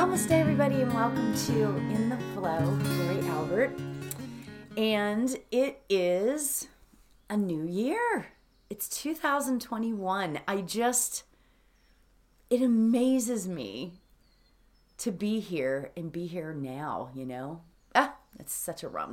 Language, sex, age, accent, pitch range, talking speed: English, female, 30-49, American, 170-255 Hz, 115 wpm